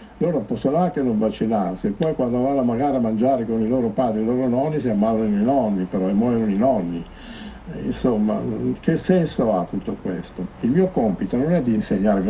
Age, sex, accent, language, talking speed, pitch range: 60-79, male, native, Italian, 205 wpm, 105-145 Hz